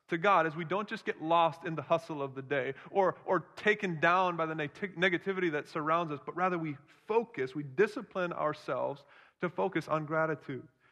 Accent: American